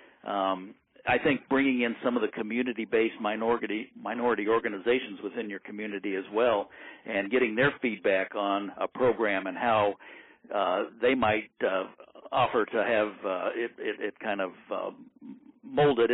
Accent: American